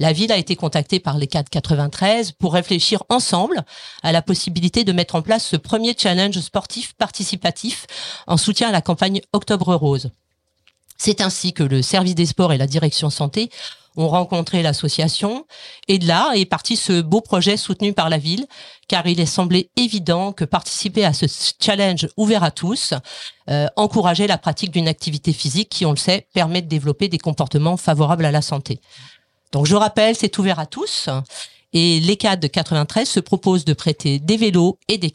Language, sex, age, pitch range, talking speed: French, female, 40-59, 155-200 Hz, 185 wpm